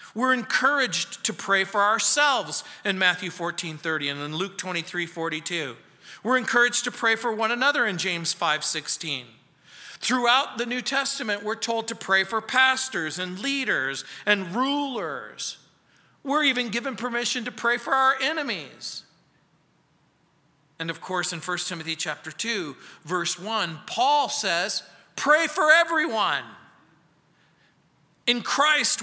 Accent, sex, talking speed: American, male, 135 wpm